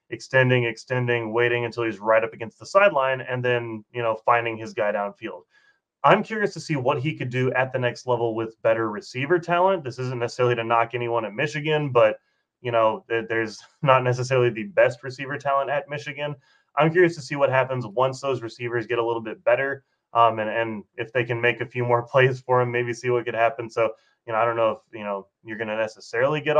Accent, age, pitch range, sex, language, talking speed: American, 20-39, 115-140 Hz, male, English, 225 wpm